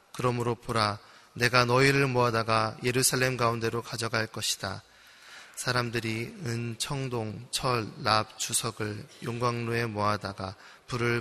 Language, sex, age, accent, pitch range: Korean, male, 20-39, native, 110-125 Hz